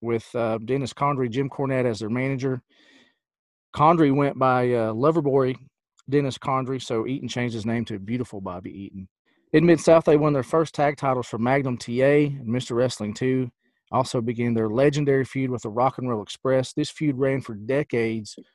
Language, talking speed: English, 180 wpm